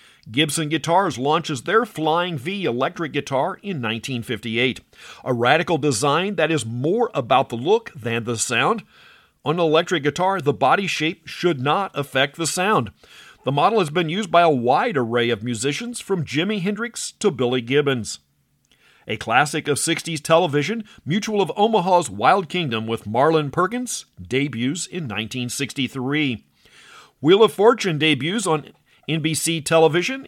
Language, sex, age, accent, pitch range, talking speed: English, male, 50-69, American, 135-185 Hz, 145 wpm